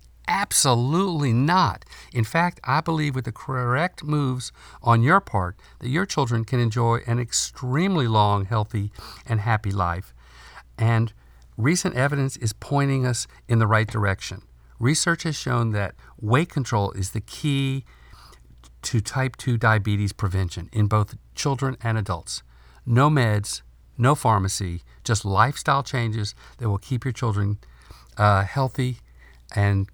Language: English